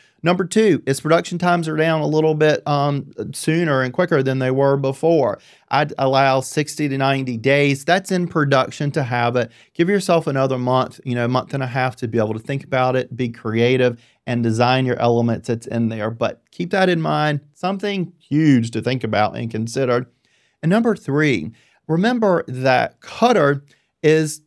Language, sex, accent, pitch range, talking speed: English, male, American, 120-155 Hz, 185 wpm